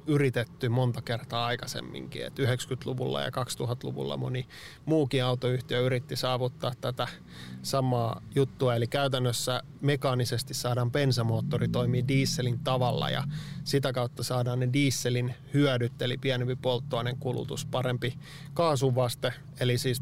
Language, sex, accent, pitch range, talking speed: Finnish, male, native, 125-140 Hz, 115 wpm